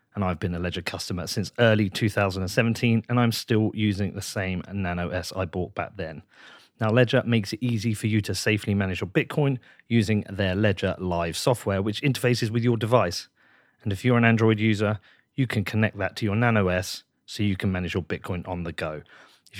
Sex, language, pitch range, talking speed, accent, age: male, English, 100-120 Hz, 205 wpm, British, 30-49